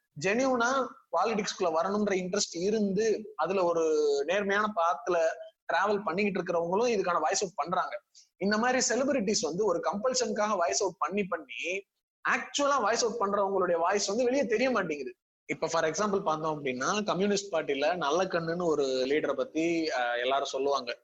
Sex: male